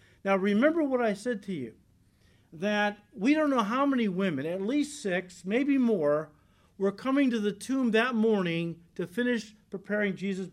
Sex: male